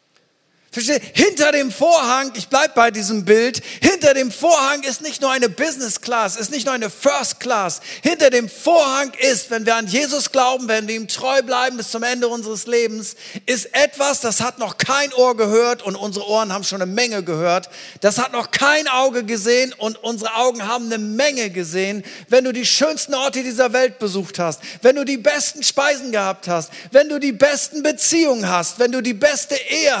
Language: German